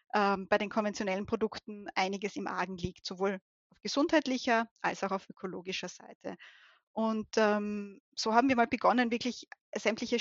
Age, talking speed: 20-39, 145 wpm